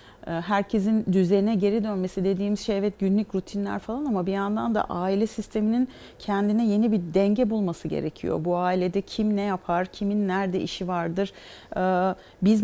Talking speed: 150 wpm